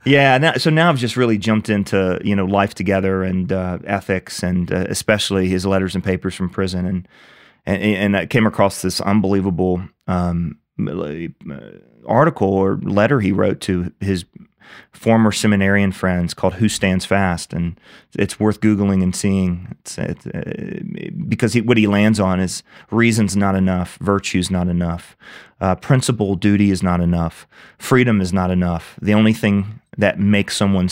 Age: 30-49